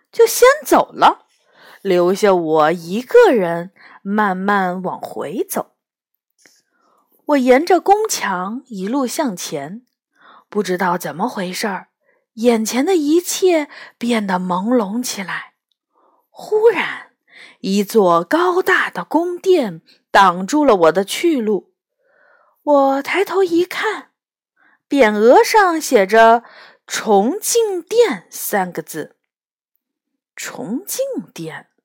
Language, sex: Chinese, female